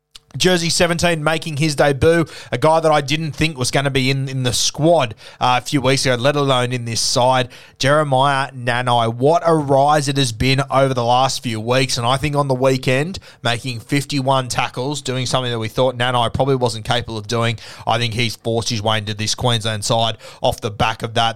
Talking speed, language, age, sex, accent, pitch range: 215 wpm, English, 20-39, male, Australian, 120-145 Hz